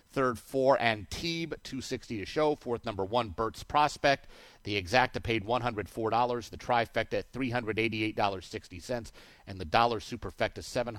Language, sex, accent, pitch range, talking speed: English, male, American, 100-125 Hz, 180 wpm